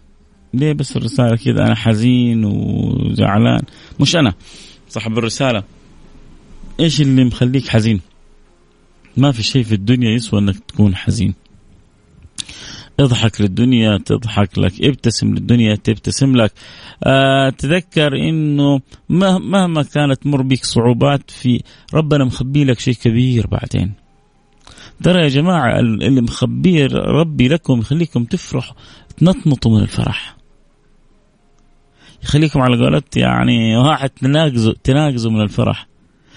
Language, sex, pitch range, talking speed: Arabic, male, 110-155 Hz, 110 wpm